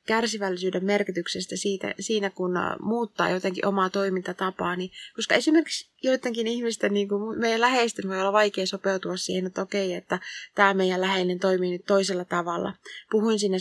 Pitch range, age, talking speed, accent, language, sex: 185-215 Hz, 20-39, 150 wpm, native, Finnish, female